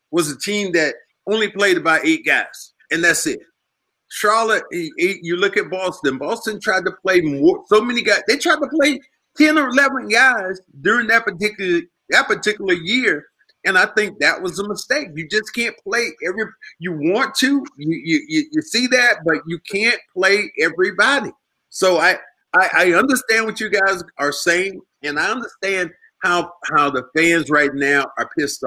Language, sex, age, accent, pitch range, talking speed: English, male, 40-59, American, 170-260 Hz, 180 wpm